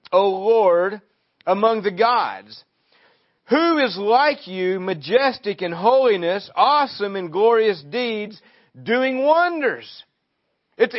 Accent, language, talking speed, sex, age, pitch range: American, English, 105 wpm, male, 50-69, 160-240 Hz